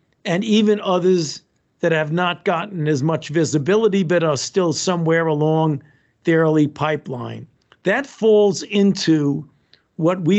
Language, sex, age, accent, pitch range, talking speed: English, male, 50-69, American, 150-185 Hz, 135 wpm